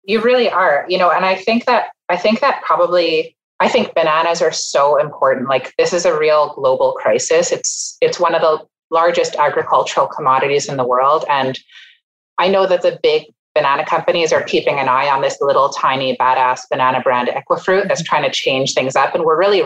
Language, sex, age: English, female, 30-49